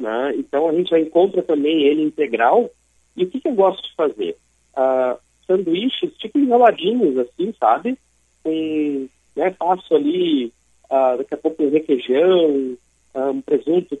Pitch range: 150-225 Hz